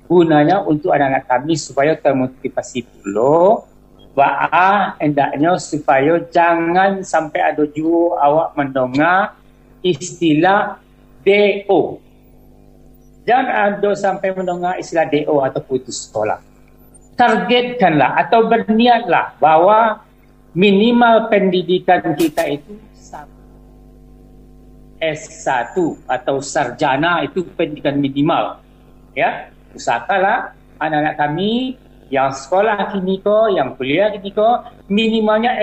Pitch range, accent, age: 140-205 Hz, native, 50-69